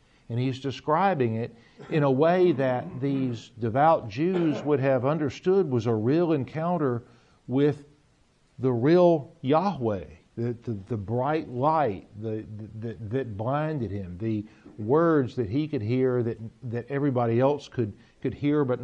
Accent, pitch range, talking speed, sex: American, 115-150 Hz, 145 wpm, male